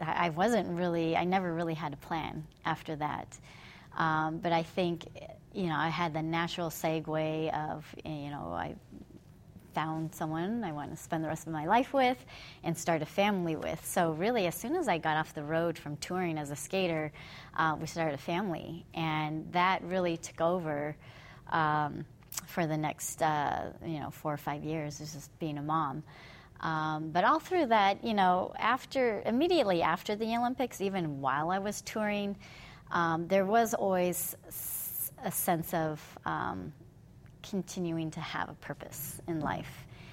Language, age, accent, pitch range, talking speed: English, 30-49, American, 150-175 Hz, 170 wpm